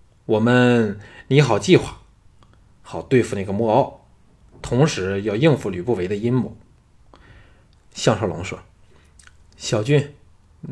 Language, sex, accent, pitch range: Chinese, male, native, 105-140 Hz